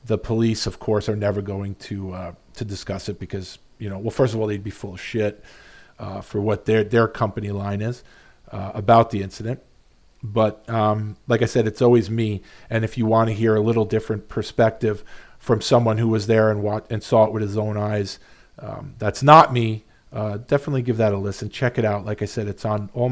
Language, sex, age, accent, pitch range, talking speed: English, male, 40-59, American, 105-125 Hz, 225 wpm